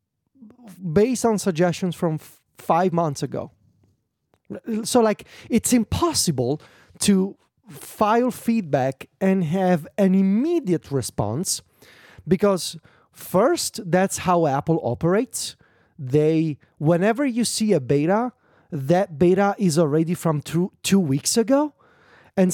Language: English